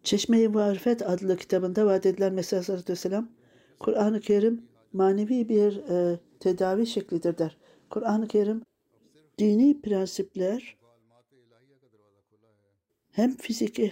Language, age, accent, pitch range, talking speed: Turkish, 60-79, native, 175-220 Hz, 90 wpm